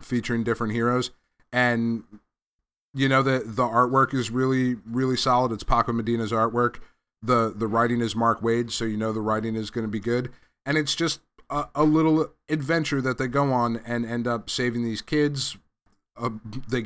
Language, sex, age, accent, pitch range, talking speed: English, male, 30-49, American, 110-125 Hz, 185 wpm